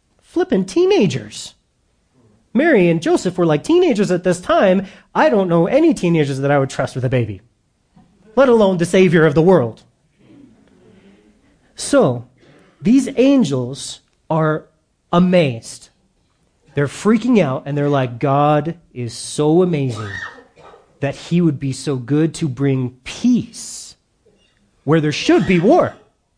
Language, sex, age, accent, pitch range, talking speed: English, male, 30-49, American, 130-185 Hz, 135 wpm